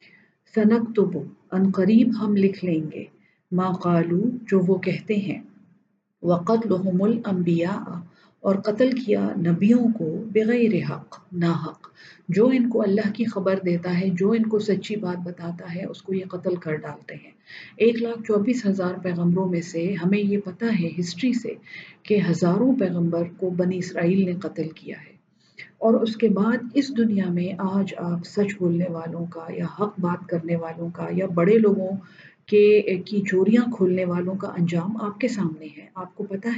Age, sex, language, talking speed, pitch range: 50-69, female, English, 160 wpm, 175-215 Hz